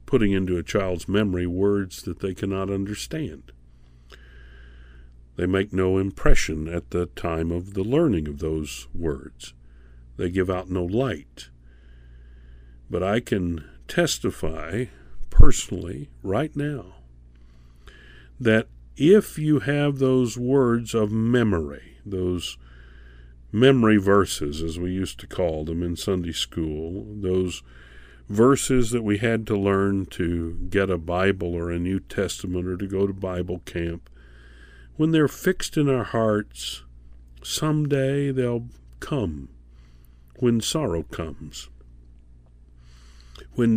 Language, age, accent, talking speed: English, 50-69, American, 120 wpm